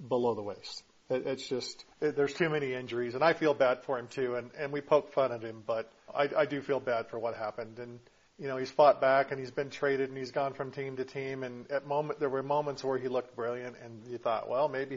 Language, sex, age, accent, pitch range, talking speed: English, male, 40-59, American, 120-140 Hz, 255 wpm